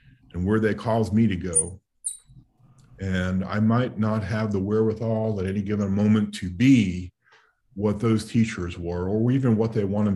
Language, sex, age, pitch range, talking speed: English, male, 50-69, 95-110 Hz, 165 wpm